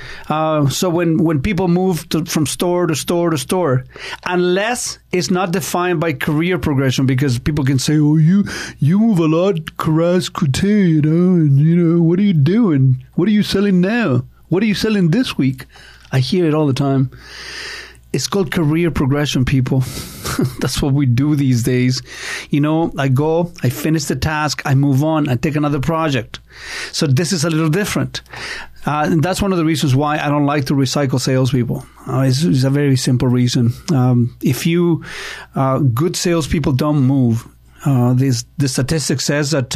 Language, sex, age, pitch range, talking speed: English, male, 40-59, 135-175 Hz, 185 wpm